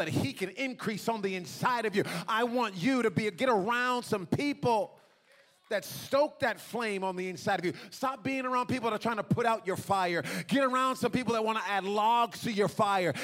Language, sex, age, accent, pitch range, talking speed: English, male, 30-49, American, 175-235 Hz, 235 wpm